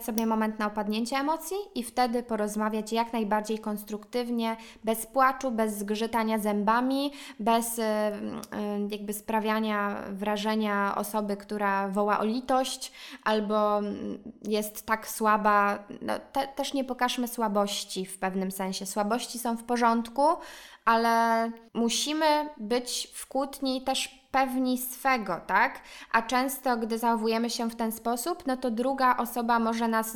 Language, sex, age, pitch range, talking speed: Polish, female, 20-39, 210-245 Hz, 135 wpm